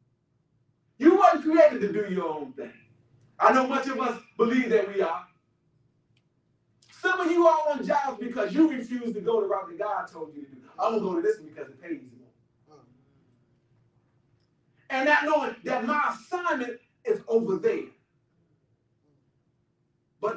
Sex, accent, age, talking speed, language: male, American, 40-59, 165 wpm, English